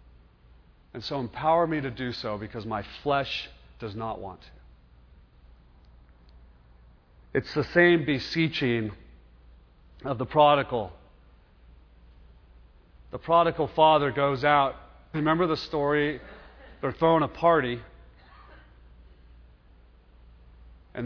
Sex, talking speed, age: male, 95 wpm, 40-59